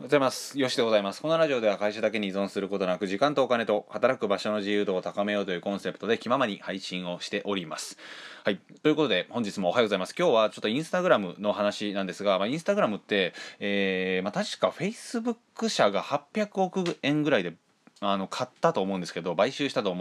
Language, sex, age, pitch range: Japanese, male, 20-39, 95-120 Hz